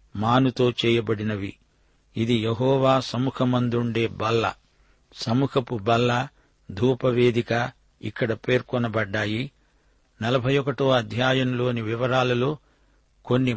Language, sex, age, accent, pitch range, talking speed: Telugu, male, 50-69, native, 115-130 Hz, 70 wpm